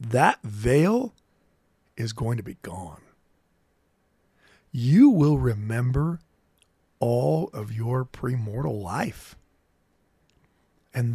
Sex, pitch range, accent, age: male, 110-180 Hz, American, 40-59